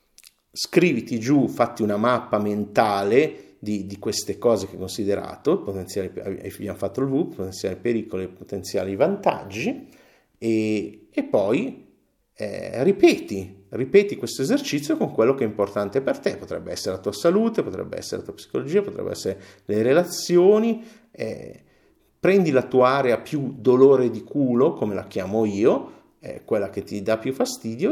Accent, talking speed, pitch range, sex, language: native, 155 wpm, 105-145 Hz, male, Italian